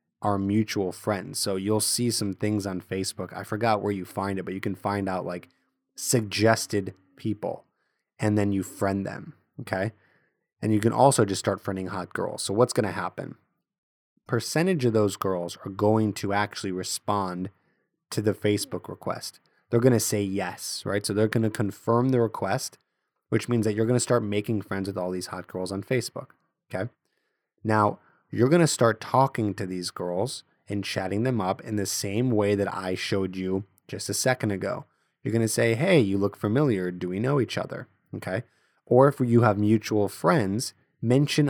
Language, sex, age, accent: English, male, 20-39, American